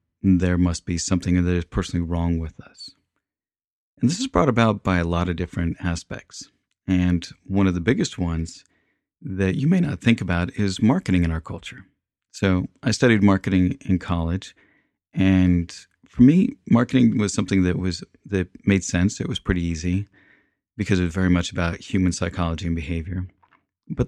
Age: 30-49